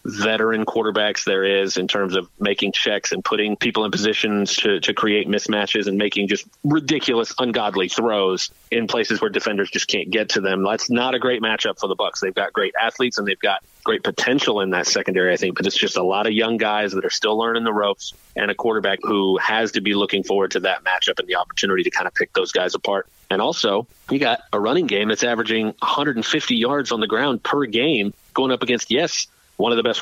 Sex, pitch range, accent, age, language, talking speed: male, 105-120 Hz, American, 30-49, English, 230 wpm